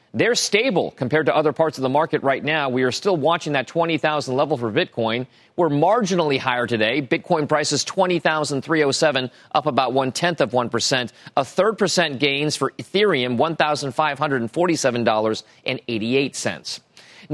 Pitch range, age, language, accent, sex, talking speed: 125-165 Hz, 40-59, English, American, male, 140 wpm